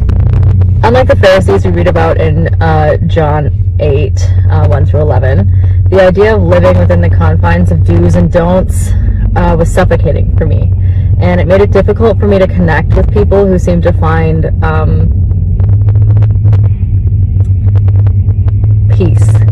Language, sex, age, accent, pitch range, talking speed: English, female, 20-39, American, 90-100 Hz, 145 wpm